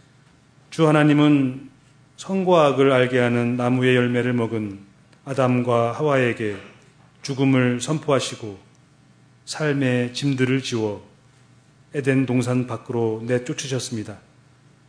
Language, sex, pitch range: Korean, male, 120-135 Hz